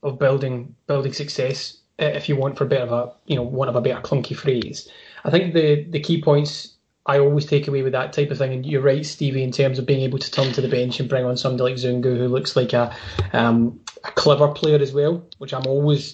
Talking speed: 250 wpm